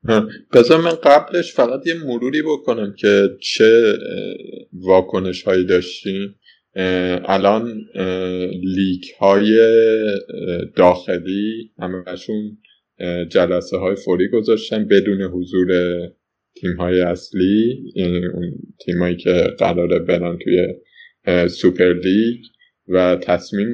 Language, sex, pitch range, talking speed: Persian, male, 90-105 Hz, 95 wpm